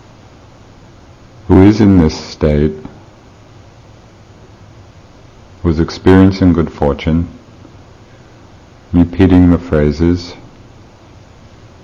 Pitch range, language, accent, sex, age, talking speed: 85-110 Hz, English, American, male, 50-69, 65 wpm